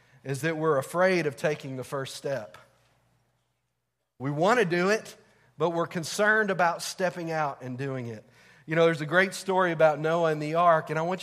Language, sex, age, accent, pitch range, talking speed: English, male, 40-59, American, 145-185 Hz, 200 wpm